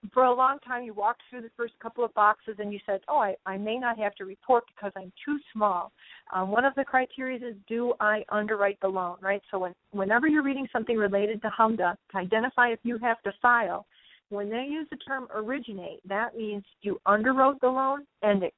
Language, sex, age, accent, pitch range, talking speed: English, female, 40-59, American, 195-245 Hz, 225 wpm